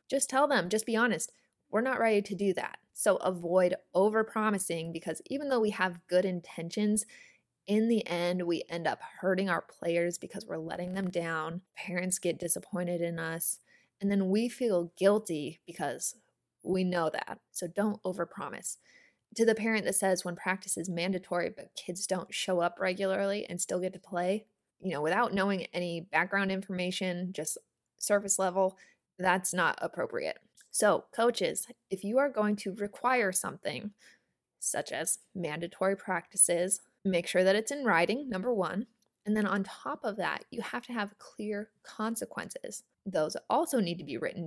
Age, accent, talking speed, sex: 20-39, American, 170 wpm, female